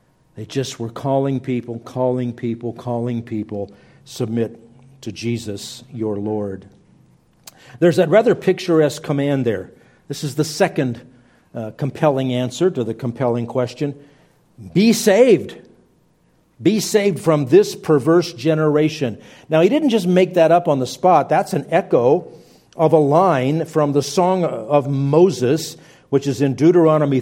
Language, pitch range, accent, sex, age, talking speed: English, 125-160 Hz, American, male, 50-69, 140 wpm